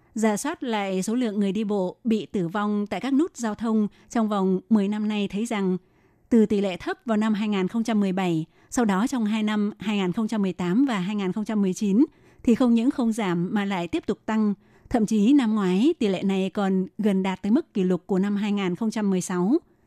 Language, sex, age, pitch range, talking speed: Vietnamese, female, 20-39, 195-230 Hz, 195 wpm